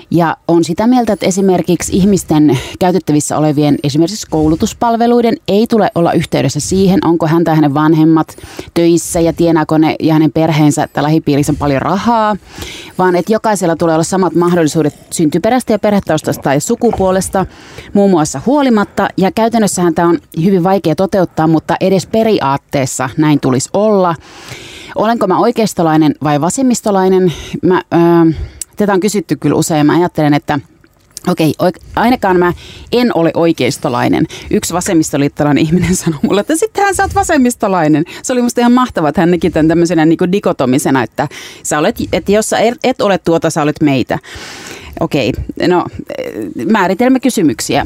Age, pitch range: 30-49, 155-215 Hz